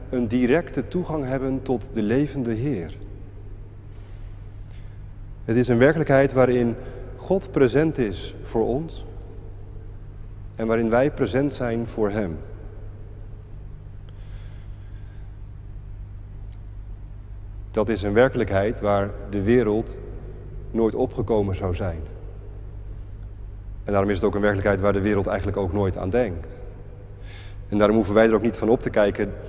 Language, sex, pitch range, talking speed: Dutch, male, 100-110 Hz, 125 wpm